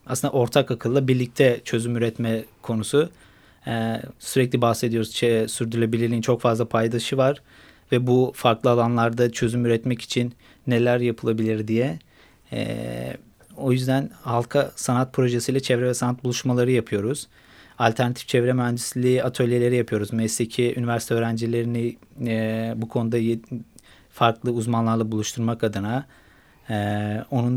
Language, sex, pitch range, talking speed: Turkish, male, 115-130 Hz, 120 wpm